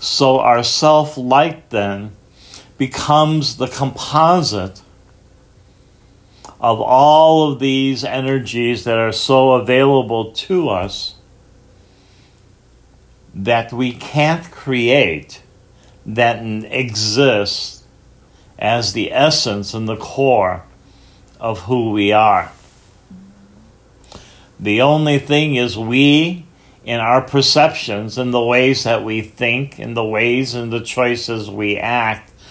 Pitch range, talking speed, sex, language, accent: 110-135 Hz, 105 wpm, male, English, American